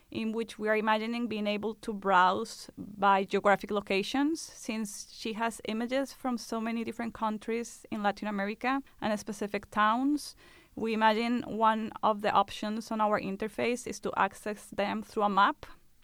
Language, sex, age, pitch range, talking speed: English, female, 20-39, 200-230 Hz, 160 wpm